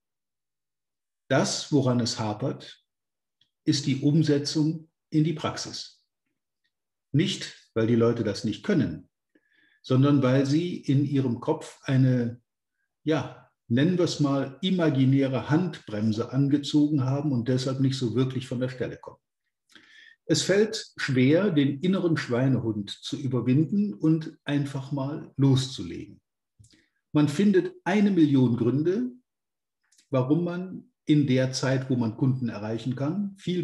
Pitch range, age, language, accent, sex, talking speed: 125-160 Hz, 50-69, German, German, male, 125 wpm